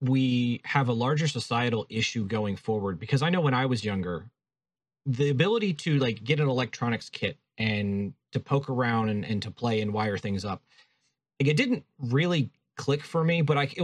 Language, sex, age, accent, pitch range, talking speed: English, male, 30-49, American, 110-140 Hz, 195 wpm